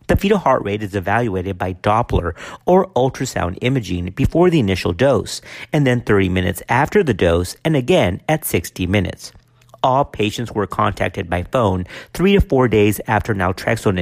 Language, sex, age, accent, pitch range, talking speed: English, male, 50-69, American, 95-150 Hz, 165 wpm